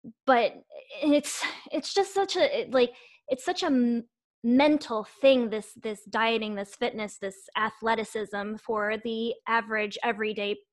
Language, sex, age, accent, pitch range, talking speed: English, female, 20-39, American, 215-275 Hz, 135 wpm